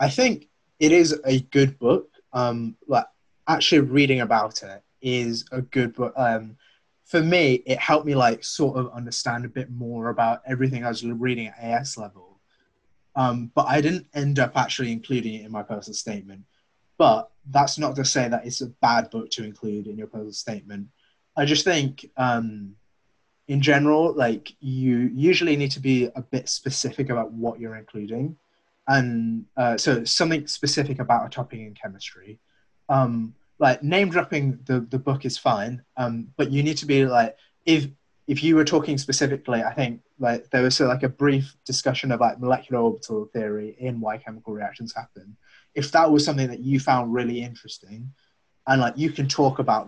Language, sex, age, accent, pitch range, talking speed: English, male, 20-39, British, 115-140 Hz, 185 wpm